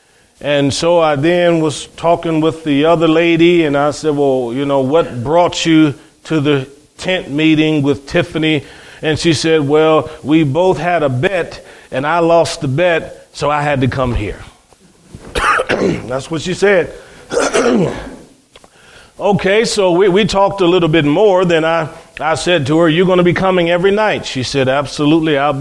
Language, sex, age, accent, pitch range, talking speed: English, male, 40-59, American, 145-180 Hz, 175 wpm